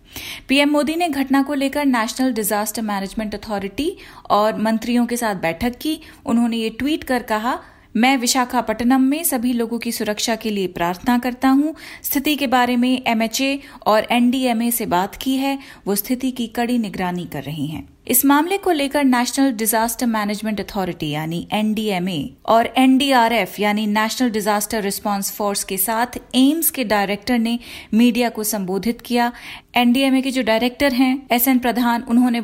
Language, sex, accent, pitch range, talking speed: Hindi, female, native, 215-255 Hz, 160 wpm